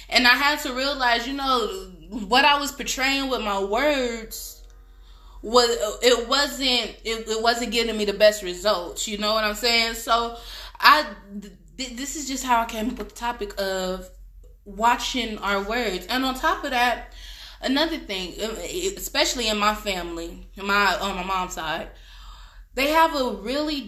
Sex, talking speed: female, 170 wpm